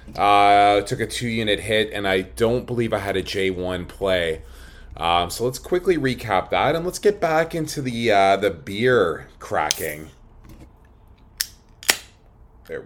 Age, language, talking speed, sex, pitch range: 30-49, English, 150 wpm, male, 85-125 Hz